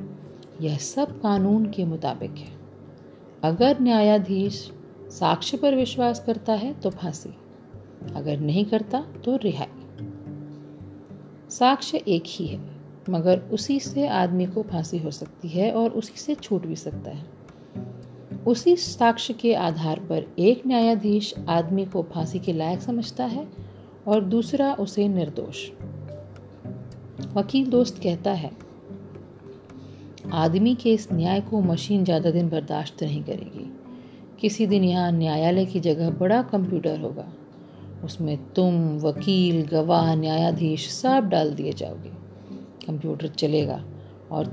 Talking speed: 125 wpm